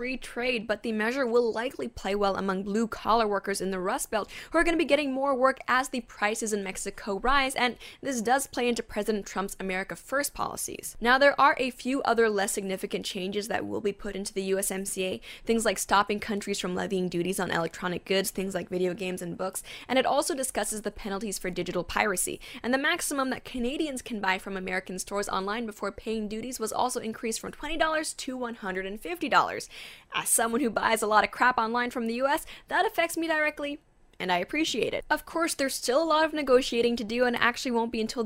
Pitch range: 195-260 Hz